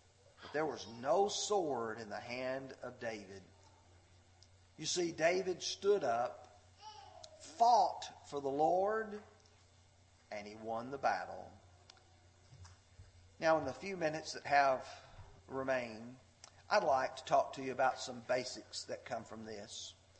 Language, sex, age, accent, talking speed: English, male, 40-59, American, 130 wpm